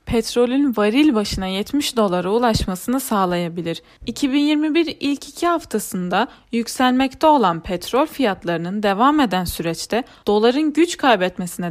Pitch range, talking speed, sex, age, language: 190-260 Hz, 110 wpm, female, 10-29, Turkish